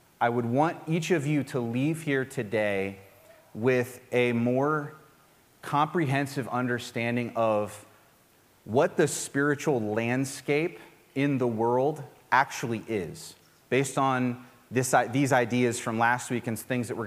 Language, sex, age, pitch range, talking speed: English, male, 30-49, 120-145 Hz, 125 wpm